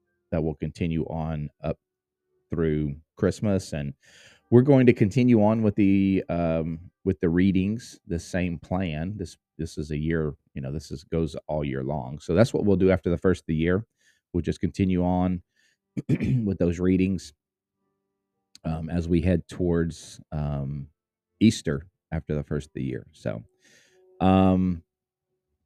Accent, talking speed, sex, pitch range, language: American, 160 wpm, male, 80-100 Hz, English